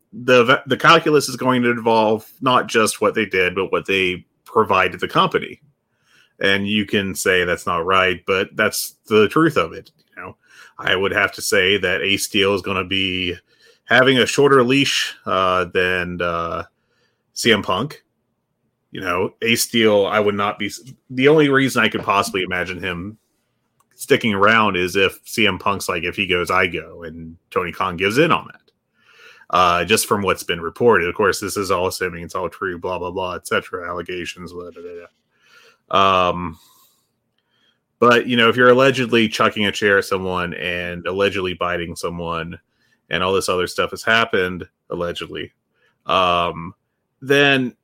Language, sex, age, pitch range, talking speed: English, male, 30-49, 90-135 Hz, 175 wpm